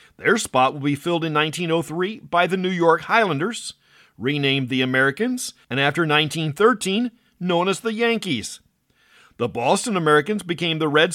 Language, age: English, 50-69